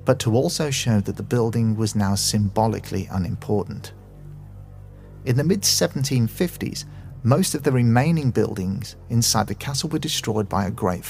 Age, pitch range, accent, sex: 40-59, 100-125 Hz, British, male